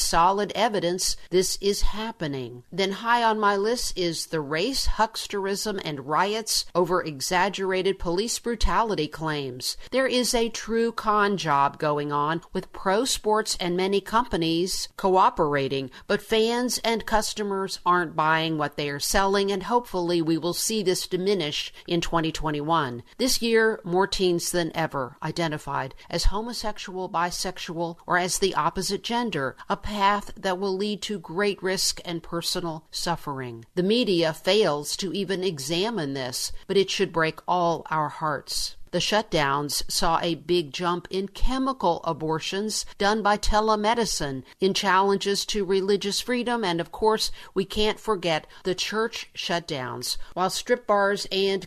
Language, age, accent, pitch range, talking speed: English, 50-69, American, 165-210 Hz, 145 wpm